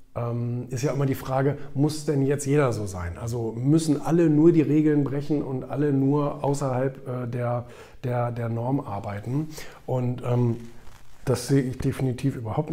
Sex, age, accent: male, 50-69, German